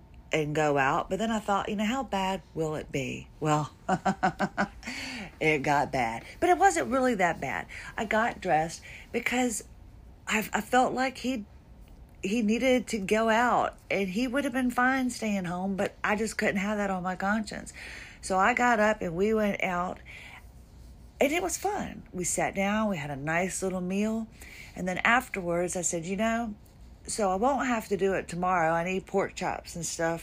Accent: American